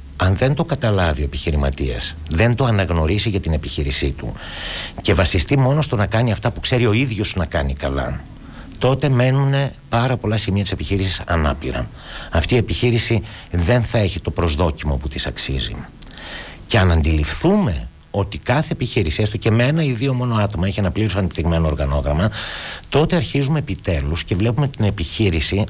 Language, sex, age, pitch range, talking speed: Greek, male, 60-79, 85-125 Hz, 170 wpm